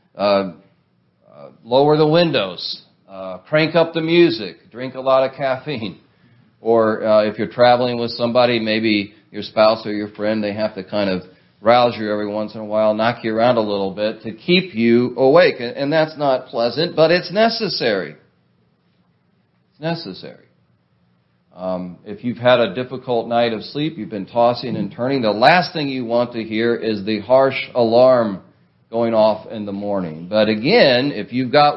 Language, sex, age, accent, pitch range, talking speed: English, male, 40-59, American, 105-130 Hz, 180 wpm